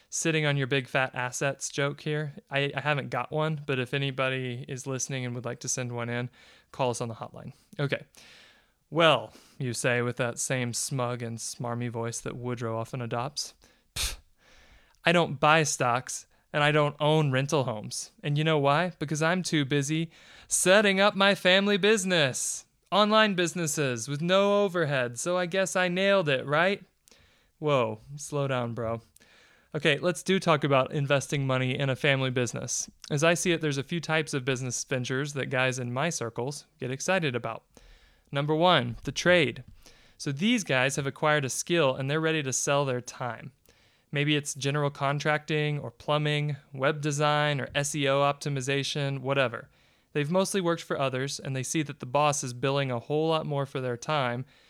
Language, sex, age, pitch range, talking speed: English, male, 20-39, 130-155 Hz, 180 wpm